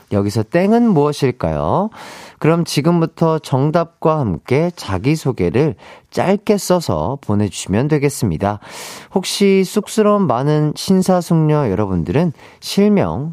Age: 40-59